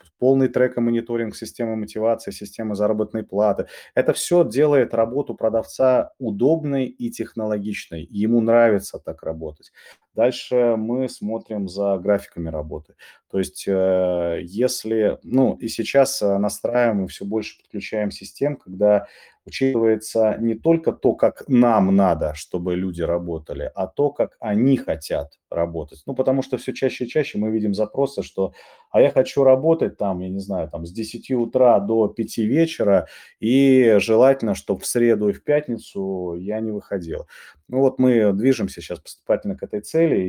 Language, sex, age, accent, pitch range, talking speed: Russian, male, 30-49, native, 95-120 Hz, 150 wpm